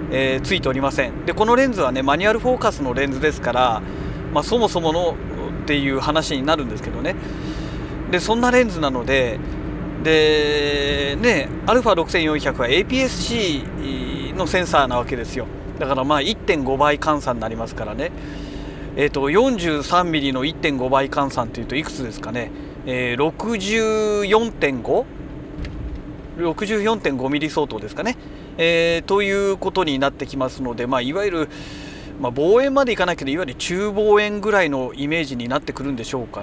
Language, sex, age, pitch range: Japanese, male, 40-59, 135-185 Hz